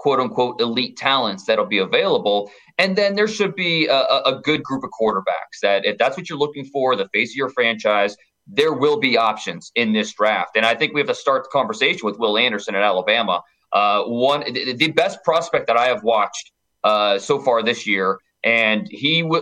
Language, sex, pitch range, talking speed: English, male, 110-165 Hz, 210 wpm